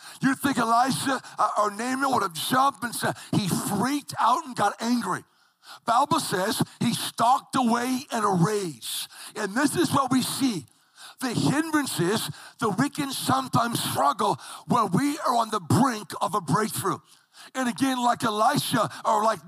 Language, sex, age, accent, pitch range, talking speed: English, male, 50-69, American, 210-265 Hz, 165 wpm